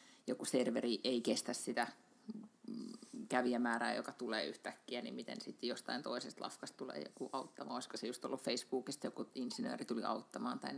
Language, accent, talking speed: Finnish, native, 155 wpm